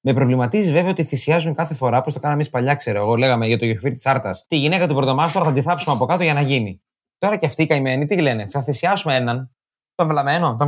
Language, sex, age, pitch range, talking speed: Greek, male, 30-49, 130-180 Hz, 245 wpm